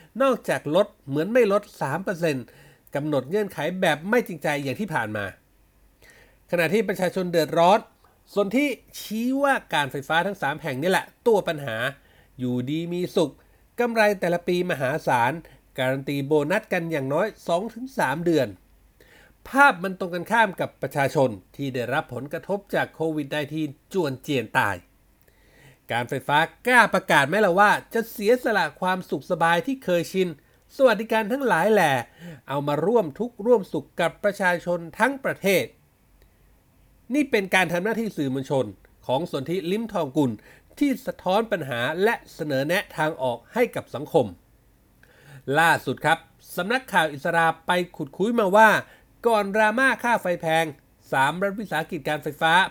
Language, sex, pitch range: Thai, male, 145-210 Hz